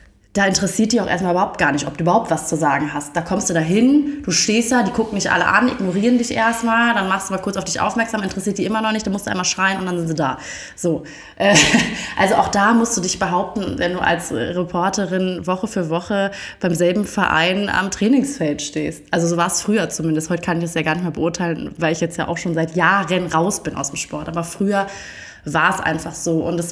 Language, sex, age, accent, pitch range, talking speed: German, female, 20-39, German, 165-195 Hz, 250 wpm